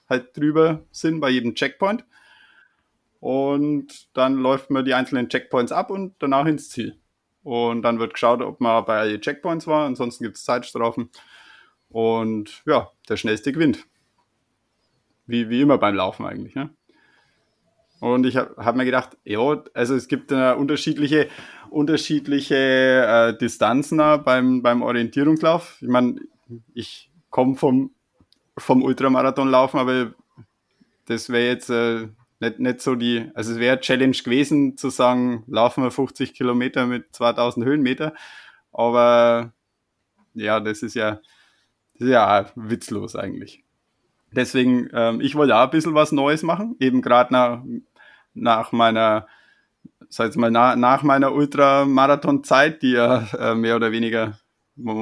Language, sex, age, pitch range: German, male, 20-39, 115-140 Hz